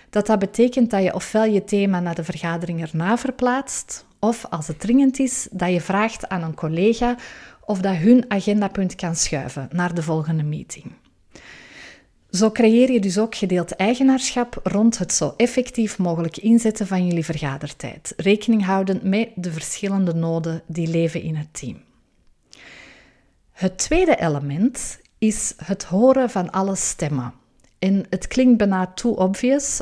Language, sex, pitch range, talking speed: Dutch, female, 170-225 Hz, 155 wpm